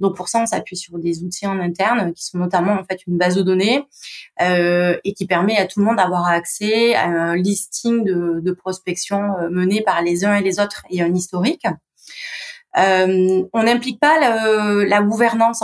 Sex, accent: female, French